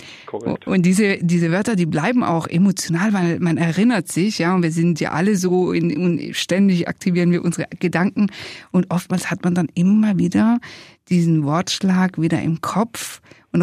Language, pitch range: German, 160-185 Hz